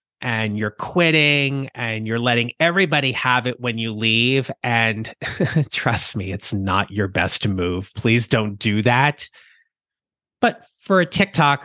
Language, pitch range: English, 110-155 Hz